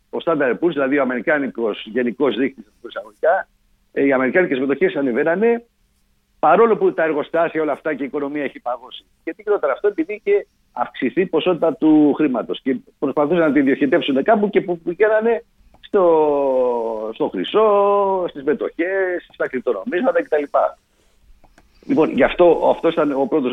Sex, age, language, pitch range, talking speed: male, 50-69, Greek, 140-205 Hz, 145 wpm